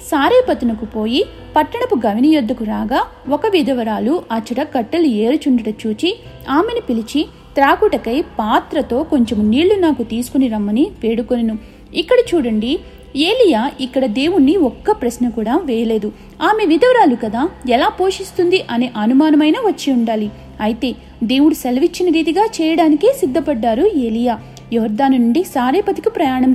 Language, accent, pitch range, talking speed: Telugu, native, 235-320 Hz, 115 wpm